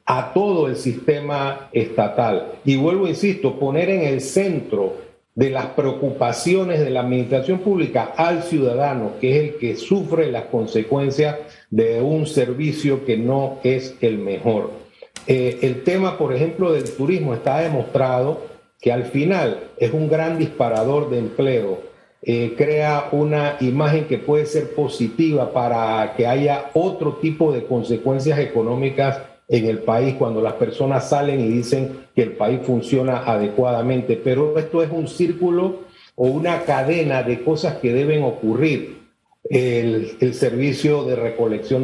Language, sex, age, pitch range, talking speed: Spanish, male, 50-69, 120-155 Hz, 145 wpm